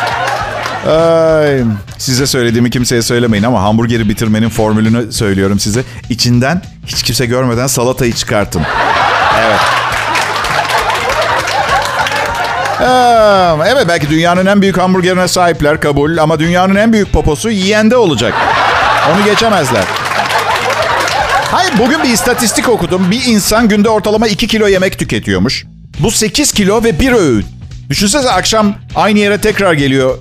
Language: Turkish